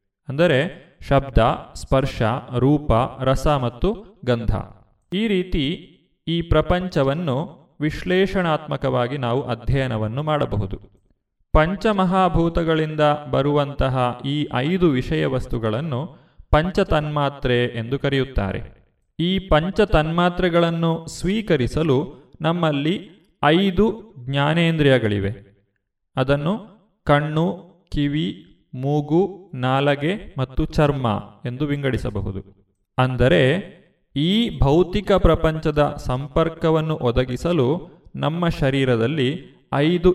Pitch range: 125-170 Hz